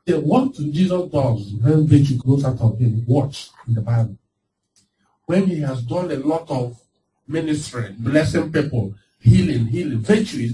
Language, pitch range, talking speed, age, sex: English, 115-155 Hz, 160 wpm, 50-69, male